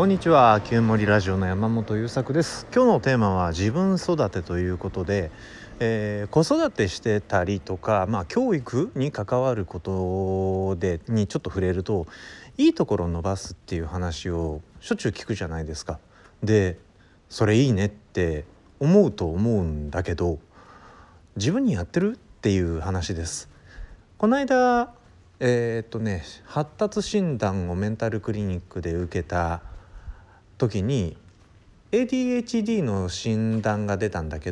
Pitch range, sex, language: 90-135 Hz, male, Japanese